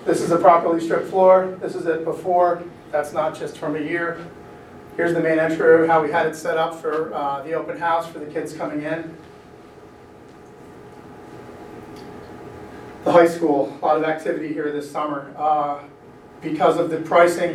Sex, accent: male, American